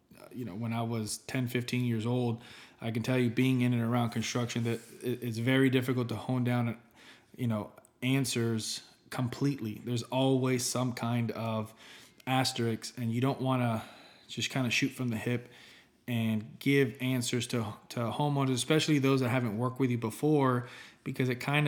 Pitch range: 115-130 Hz